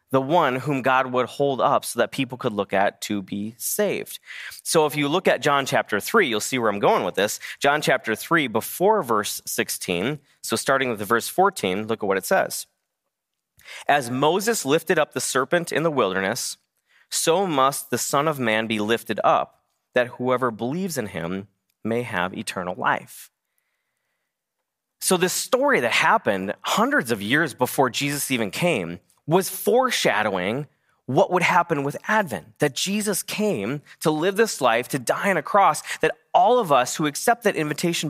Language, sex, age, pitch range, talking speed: English, male, 30-49, 120-165 Hz, 180 wpm